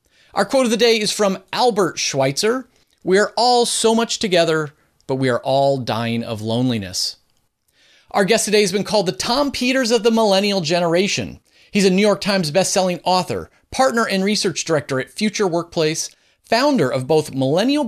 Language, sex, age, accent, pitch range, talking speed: English, male, 30-49, American, 140-210 Hz, 180 wpm